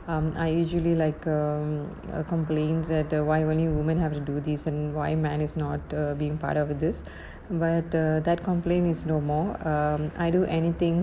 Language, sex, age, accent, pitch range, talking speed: English, female, 20-39, Indian, 155-170 Hz, 200 wpm